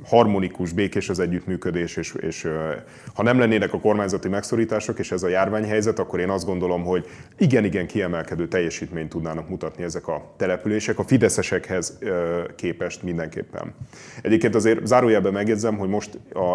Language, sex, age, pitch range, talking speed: Hungarian, male, 30-49, 95-120 Hz, 145 wpm